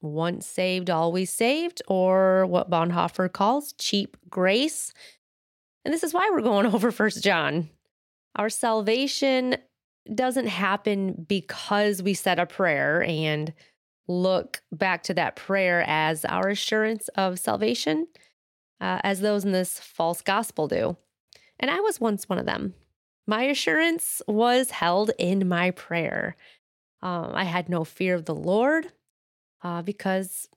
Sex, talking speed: female, 140 wpm